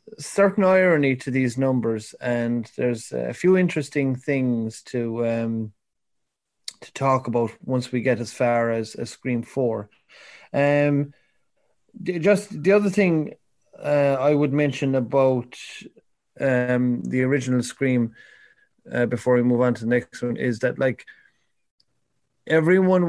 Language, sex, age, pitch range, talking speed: English, male, 30-49, 115-135 Hz, 135 wpm